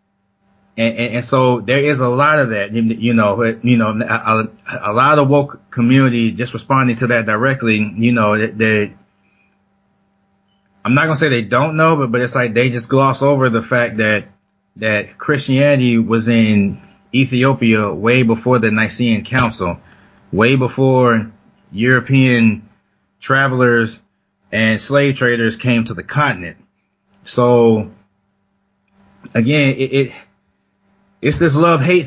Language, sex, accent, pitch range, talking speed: English, male, American, 110-135 Hz, 145 wpm